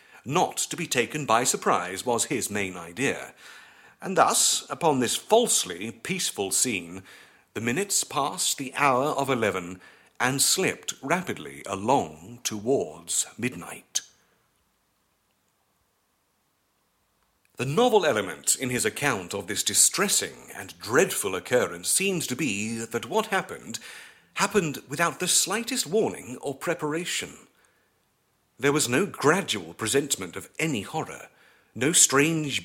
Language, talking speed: English, 120 wpm